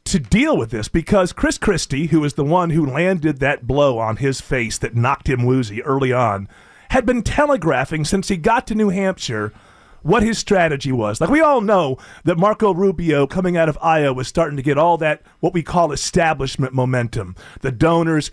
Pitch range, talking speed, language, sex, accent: 135-190 Hz, 200 wpm, English, male, American